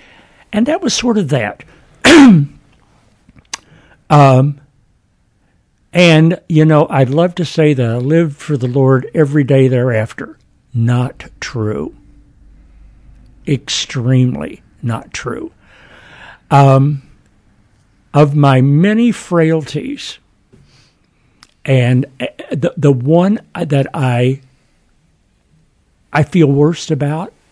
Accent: American